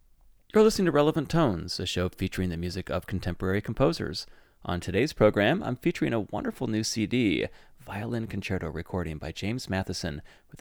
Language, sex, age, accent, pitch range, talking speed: English, male, 30-49, American, 90-110 Hz, 165 wpm